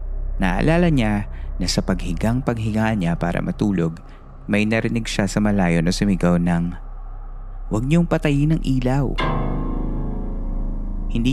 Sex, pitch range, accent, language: male, 85-115 Hz, native, Filipino